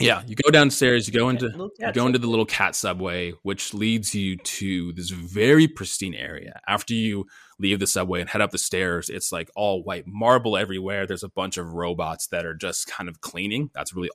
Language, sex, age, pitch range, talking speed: English, male, 20-39, 90-110 Hz, 210 wpm